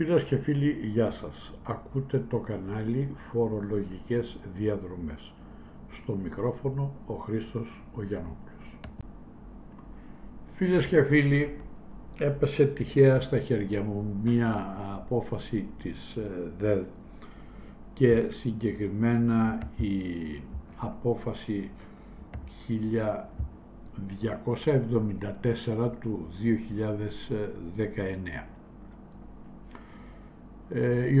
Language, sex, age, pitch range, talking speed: Greek, male, 60-79, 105-140 Hz, 70 wpm